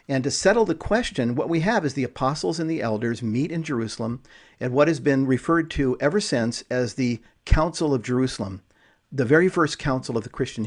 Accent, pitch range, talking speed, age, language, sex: American, 120-150 Hz, 210 wpm, 50-69, English, male